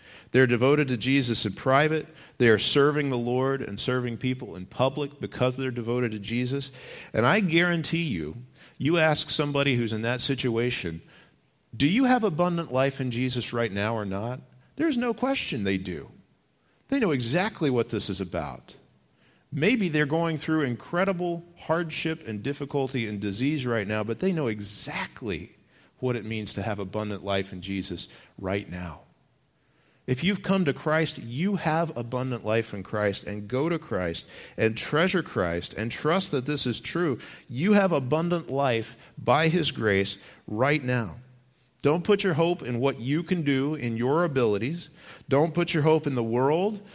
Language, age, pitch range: English, 50-69, 115-155 Hz